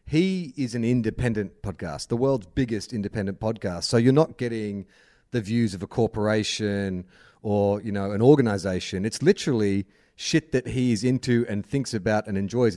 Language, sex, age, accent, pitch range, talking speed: English, male, 30-49, Australian, 105-135 Hz, 170 wpm